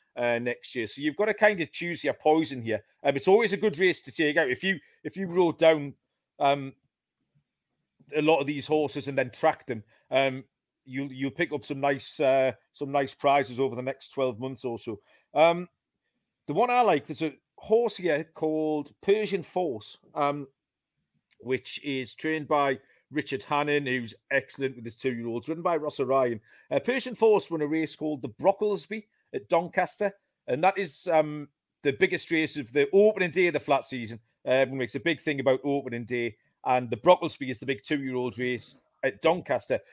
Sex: male